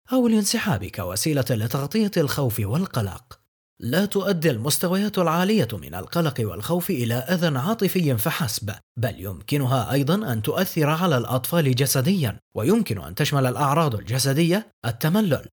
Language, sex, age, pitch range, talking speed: English, male, 30-49, 125-200 Hz, 120 wpm